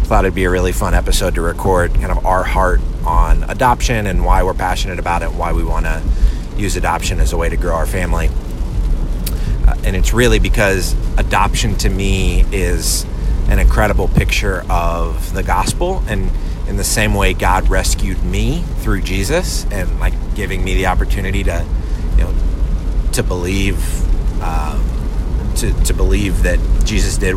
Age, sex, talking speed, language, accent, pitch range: 30-49, male, 170 wpm, English, American, 85-100 Hz